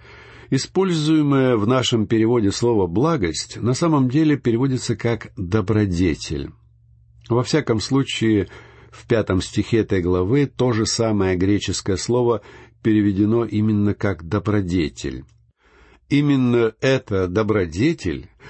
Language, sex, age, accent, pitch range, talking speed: Russian, male, 60-79, native, 100-130 Hz, 105 wpm